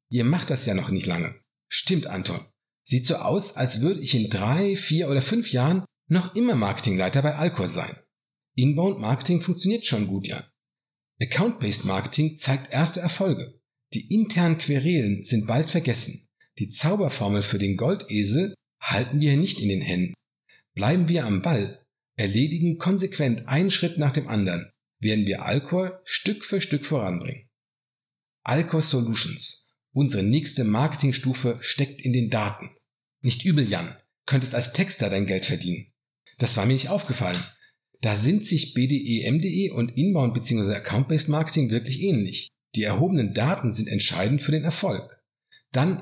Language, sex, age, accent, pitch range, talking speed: German, male, 50-69, German, 115-160 Hz, 150 wpm